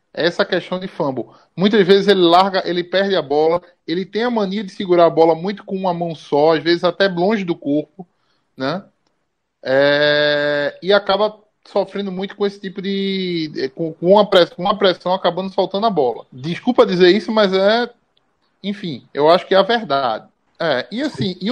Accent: Brazilian